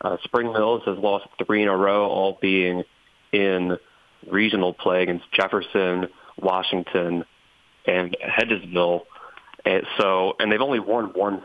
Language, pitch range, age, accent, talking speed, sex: English, 95-115 Hz, 30-49, American, 135 wpm, male